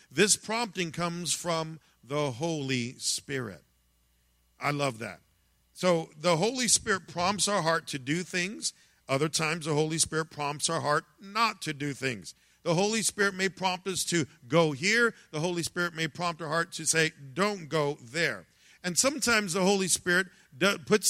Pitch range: 150-195 Hz